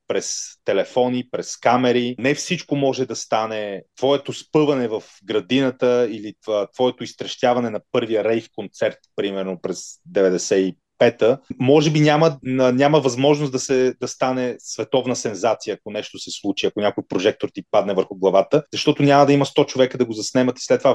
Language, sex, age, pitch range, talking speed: Bulgarian, male, 30-49, 120-145 Hz, 170 wpm